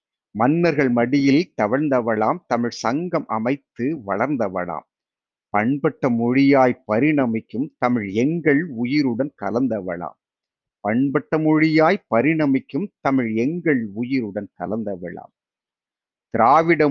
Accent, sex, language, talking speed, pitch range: native, male, Tamil, 80 wpm, 125-165 Hz